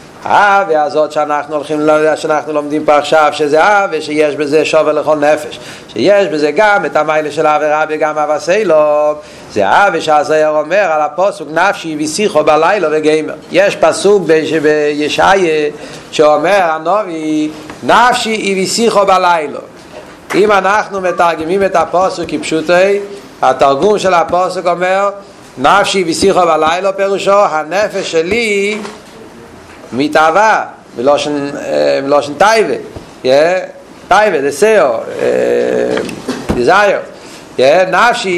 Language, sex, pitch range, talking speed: Hebrew, male, 155-210 Hz, 95 wpm